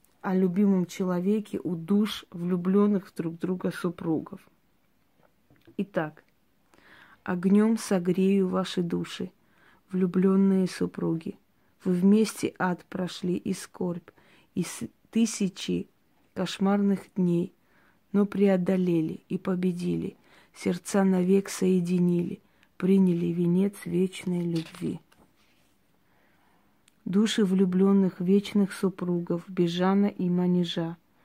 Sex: female